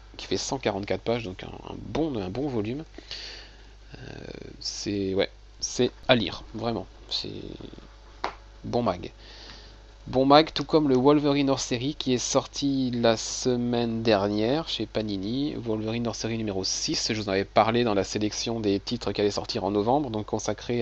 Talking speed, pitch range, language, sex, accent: 165 wpm, 100-120 Hz, French, male, French